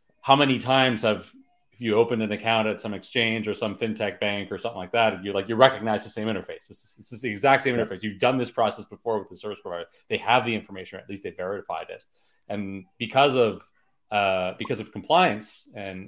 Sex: male